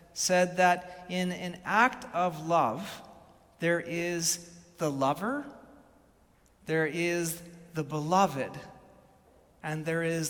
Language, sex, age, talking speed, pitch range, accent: English, male, 40-59, 105 wpm, 160-190 Hz, American